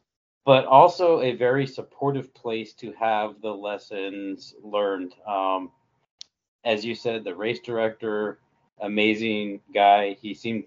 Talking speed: 125 wpm